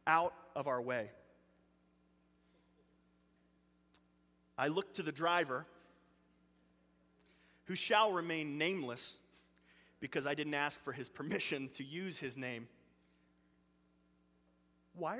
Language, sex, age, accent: English, male, 30-49, American